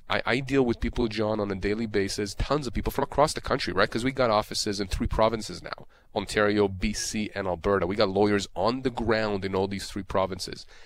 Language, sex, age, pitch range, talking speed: English, male, 30-49, 100-125 Hz, 220 wpm